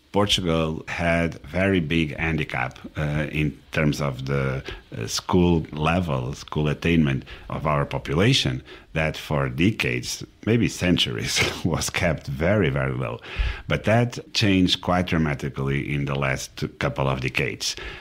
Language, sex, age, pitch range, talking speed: English, male, 60-79, 75-95 Hz, 125 wpm